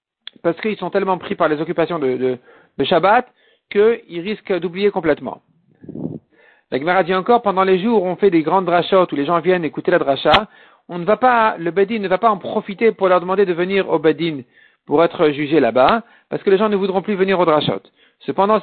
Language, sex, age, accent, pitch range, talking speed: French, male, 50-69, French, 170-220 Hz, 210 wpm